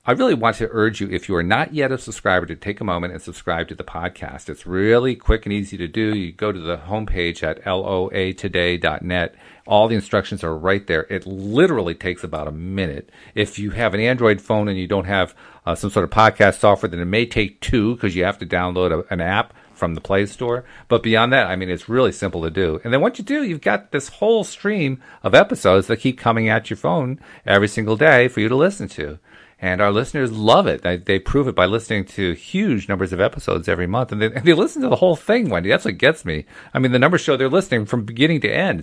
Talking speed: 245 wpm